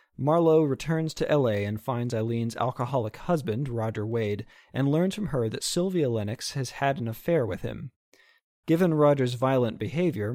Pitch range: 115-150 Hz